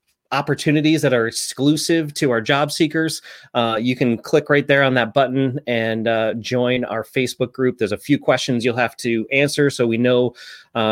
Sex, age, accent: male, 30-49, American